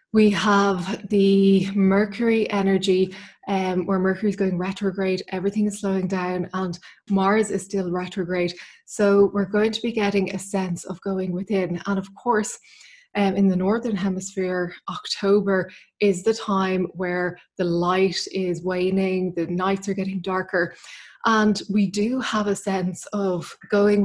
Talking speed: 150 wpm